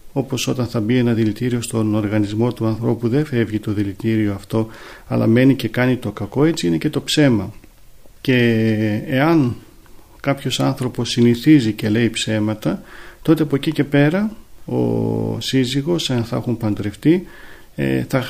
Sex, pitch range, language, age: male, 110-145 Hz, Greek, 40-59